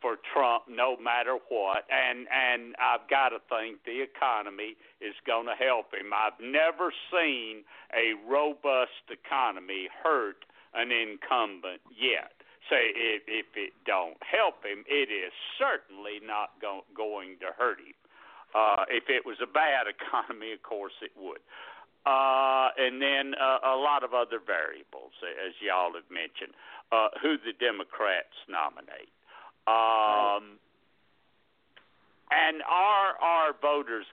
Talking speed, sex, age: 140 wpm, male, 60-79